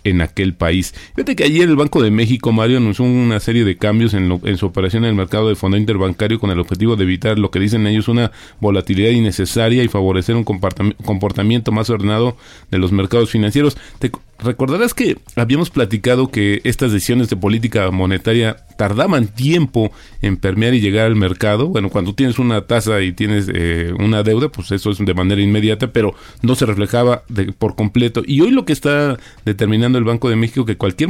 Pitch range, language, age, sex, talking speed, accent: 100-125 Hz, Spanish, 40-59, male, 200 wpm, Mexican